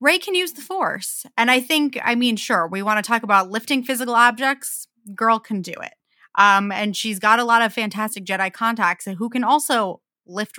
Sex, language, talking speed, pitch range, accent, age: female, English, 210 wpm, 195-260 Hz, American, 20-39